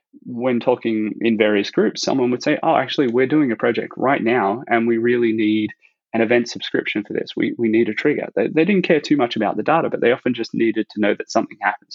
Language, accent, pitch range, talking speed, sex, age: English, Australian, 105-120 Hz, 245 wpm, male, 20-39